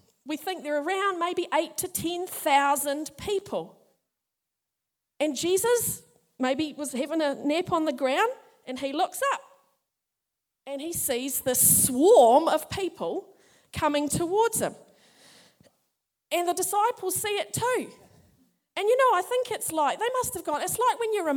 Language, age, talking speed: English, 40-59, 150 wpm